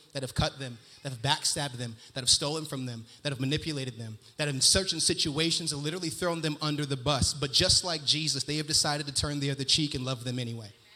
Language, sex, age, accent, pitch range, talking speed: English, male, 30-49, American, 140-175 Hz, 245 wpm